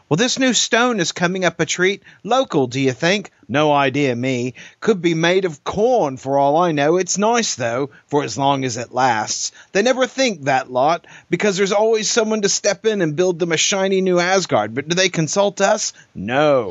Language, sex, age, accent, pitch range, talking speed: English, male, 40-59, American, 120-185 Hz, 210 wpm